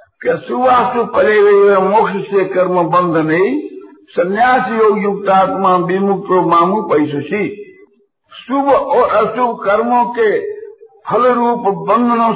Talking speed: 110 wpm